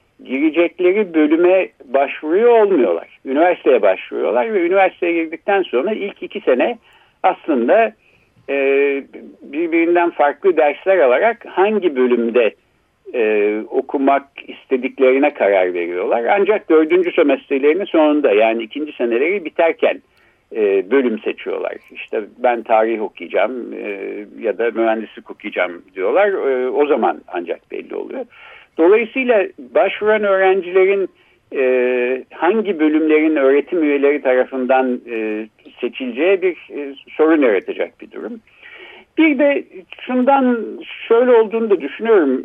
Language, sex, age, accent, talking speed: Turkish, male, 60-79, native, 110 wpm